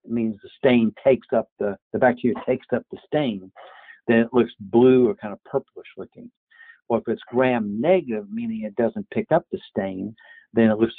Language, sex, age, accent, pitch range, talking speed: English, male, 60-79, American, 105-130 Hz, 195 wpm